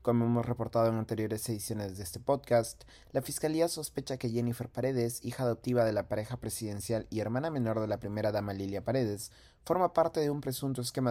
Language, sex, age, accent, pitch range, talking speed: Spanish, male, 30-49, Mexican, 105-125 Hz, 195 wpm